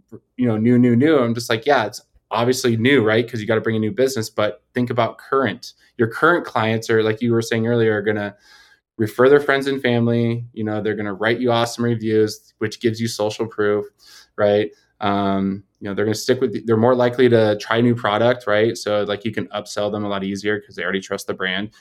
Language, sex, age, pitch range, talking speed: English, male, 20-39, 105-120 Hz, 235 wpm